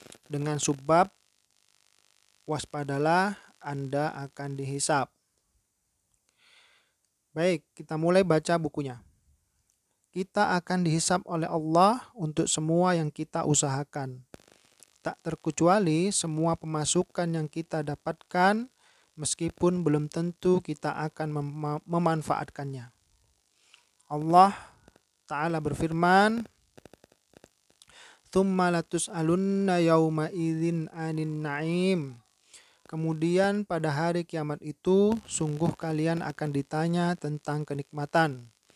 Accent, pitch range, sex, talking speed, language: native, 145-170 Hz, male, 85 wpm, Indonesian